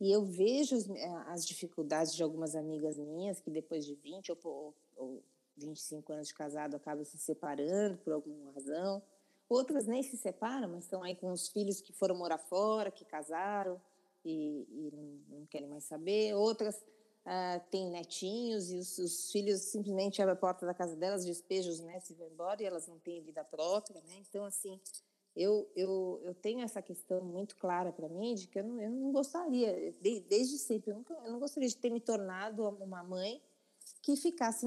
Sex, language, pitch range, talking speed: female, Portuguese, 170-220 Hz, 190 wpm